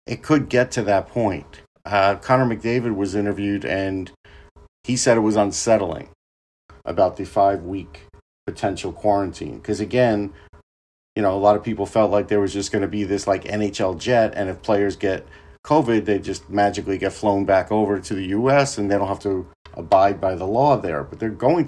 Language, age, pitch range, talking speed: English, 50-69, 95-110 Hz, 195 wpm